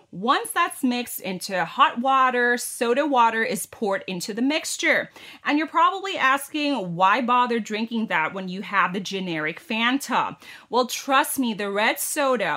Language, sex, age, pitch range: Thai, female, 30-49, 200-285 Hz